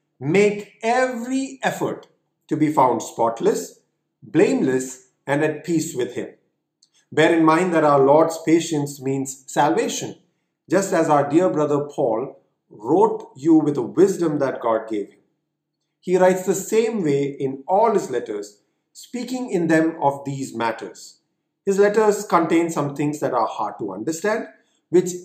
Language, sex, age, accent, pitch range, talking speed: English, male, 40-59, Indian, 135-185 Hz, 150 wpm